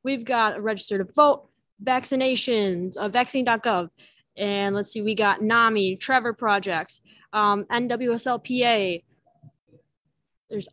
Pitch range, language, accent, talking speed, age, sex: 210-270 Hz, English, American, 110 wpm, 20-39, female